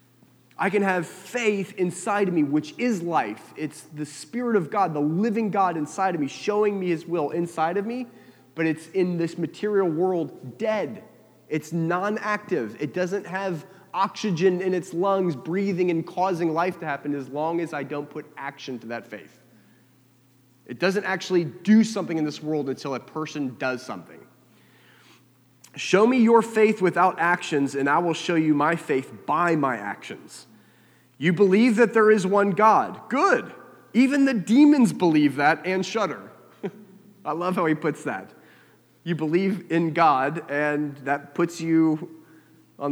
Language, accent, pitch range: English, American, 145-190 Hz